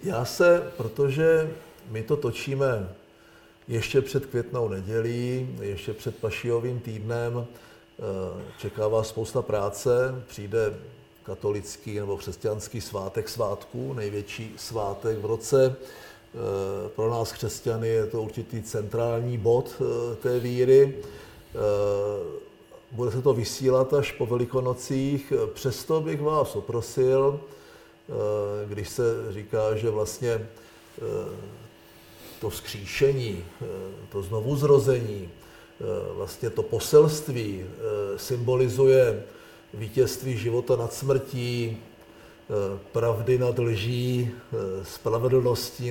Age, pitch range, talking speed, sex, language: 50-69, 110-135 Hz, 90 wpm, male, Czech